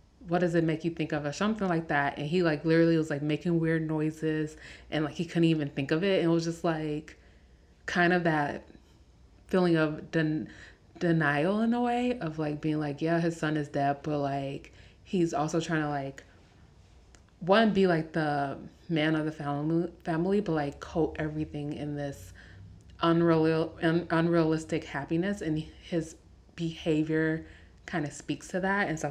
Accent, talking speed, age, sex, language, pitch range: American, 185 wpm, 30-49, female, English, 145-170 Hz